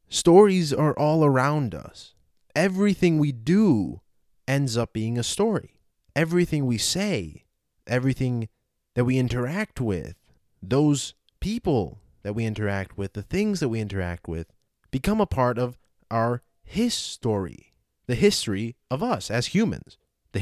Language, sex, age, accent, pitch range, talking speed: English, male, 30-49, American, 110-170 Hz, 135 wpm